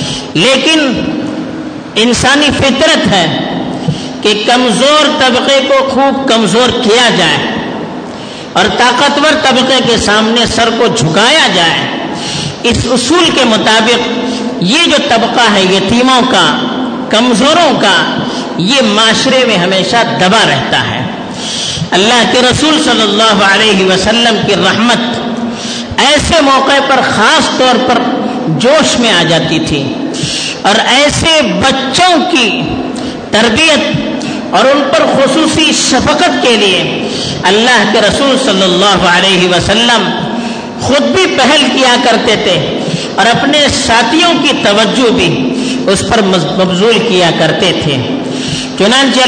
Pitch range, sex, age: 215-270 Hz, female, 50-69